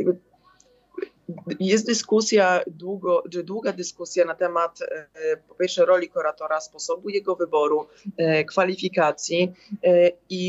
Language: Polish